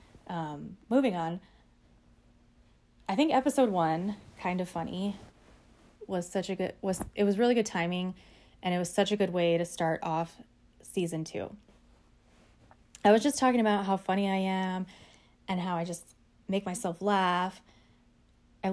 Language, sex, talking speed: English, female, 155 wpm